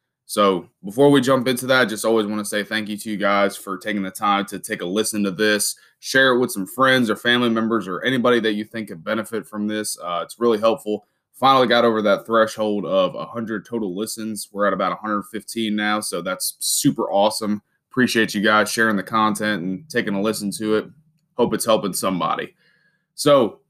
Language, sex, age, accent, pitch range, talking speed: English, male, 20-39, American, 100-120 Hz, 210 wpm